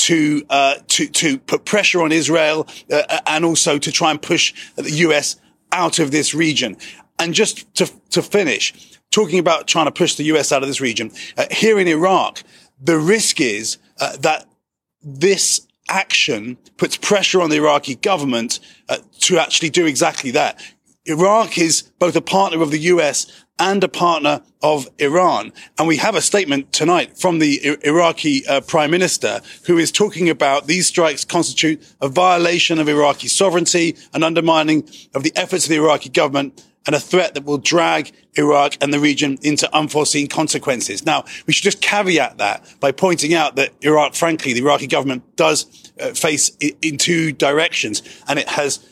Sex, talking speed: male, 175 wpm